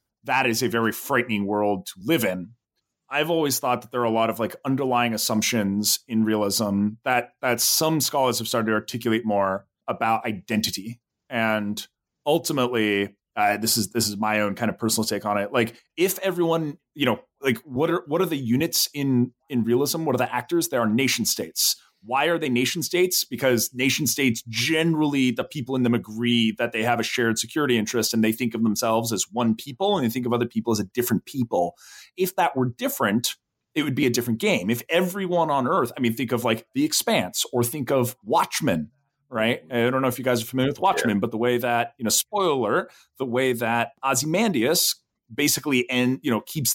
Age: 30-49